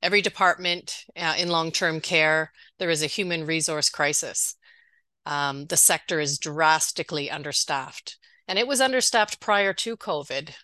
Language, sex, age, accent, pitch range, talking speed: English, female, 30-49, American, 155-180 Hz, 140 wpm